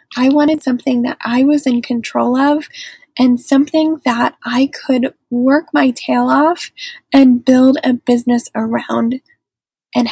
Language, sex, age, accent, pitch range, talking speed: English, female, 10-29, American, 245-290 Hz, 140 wpm